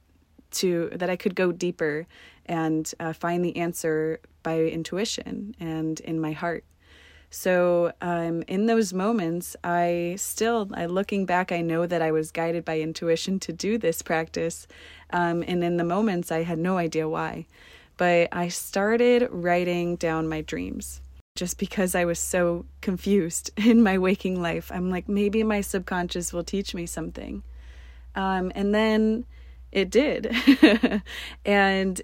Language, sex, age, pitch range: English, female, 20-39, 165-195 Hz